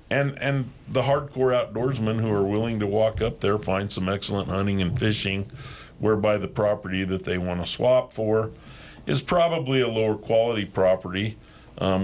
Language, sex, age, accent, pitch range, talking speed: English, male, 50-69, American, 90-110 Hz, 170 wpm